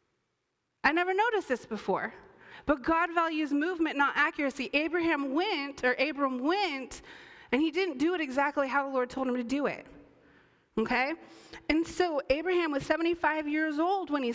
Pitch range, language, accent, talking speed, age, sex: 235-315 Hz, English, American, 165 wpm, 30-49, female